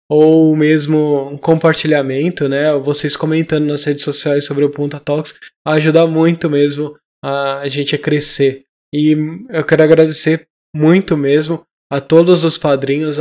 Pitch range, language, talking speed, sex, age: 145-160 Hz, Portuguese, 140 wpm, male, 10-29